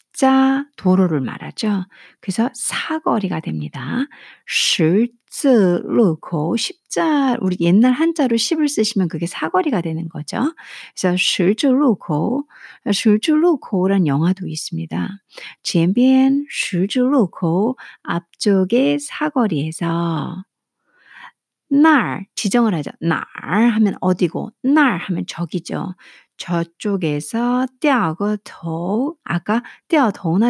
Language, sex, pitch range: Korean, female, 175-265 Hz